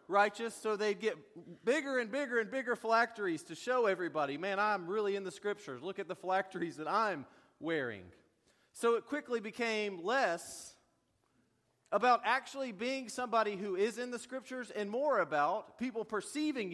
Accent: American